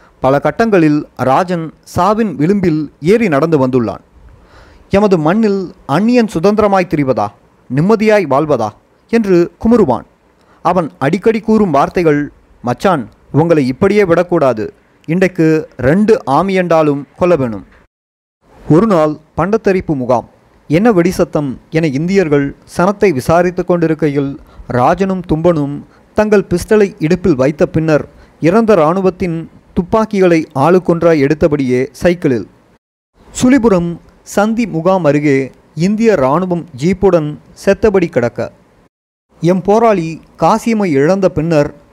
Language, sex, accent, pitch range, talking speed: Tamil, male, native, 140-195 Hz, 95 wpm